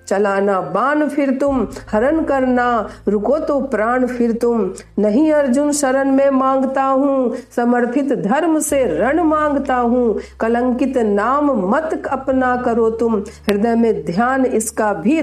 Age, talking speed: 50-69, 135 wpm